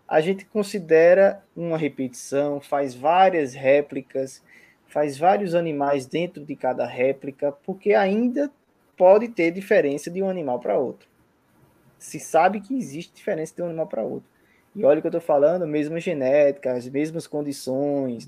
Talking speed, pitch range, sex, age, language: 160 wpm, 140-195 Hz, male, 20-39, Portuguese